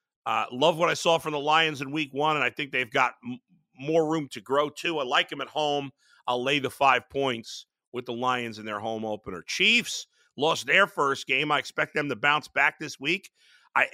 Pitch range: 125-165 Hz